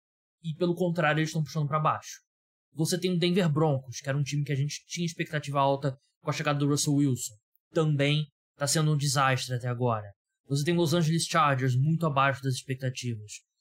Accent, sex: Brazilian, male